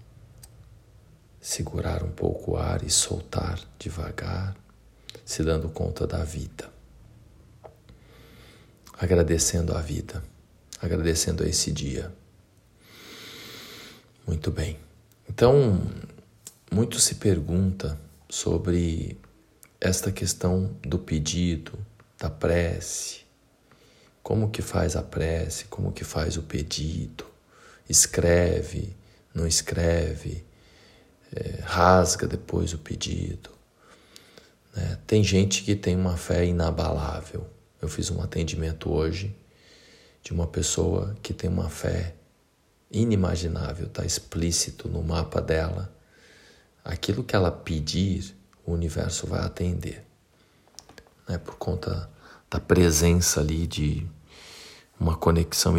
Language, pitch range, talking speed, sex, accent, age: Portuguese, 80-100 Hz, 100 wpm, male, Brazilian, 40-59